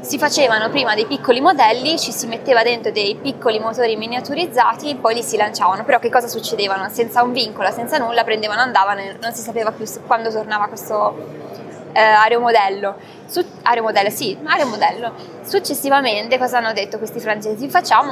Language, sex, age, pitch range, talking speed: Italian, female, 20-39, 210-245 Hz, 170 wpm